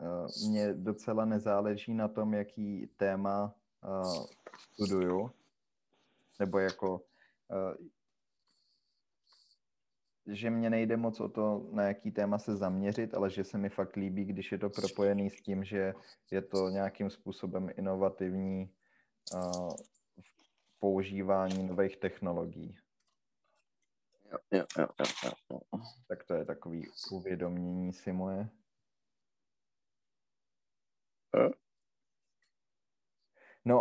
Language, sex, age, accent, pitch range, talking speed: Czech, male, 30-49, native, 95-110 Hz, 90 wpm